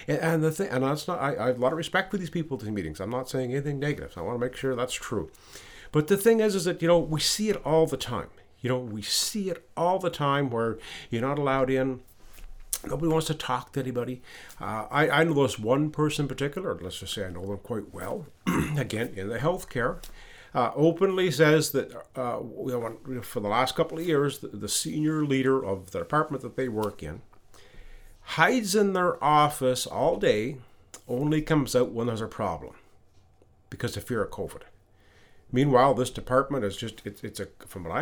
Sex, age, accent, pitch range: male, 50-69, American, 110-155 Hz